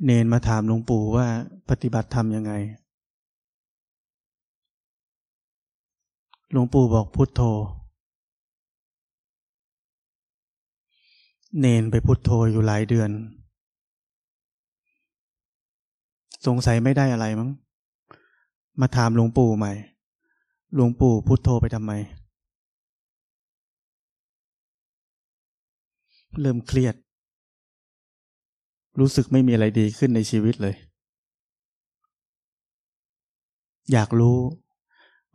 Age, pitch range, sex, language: 20-39, 110-130 Hz, male, Thai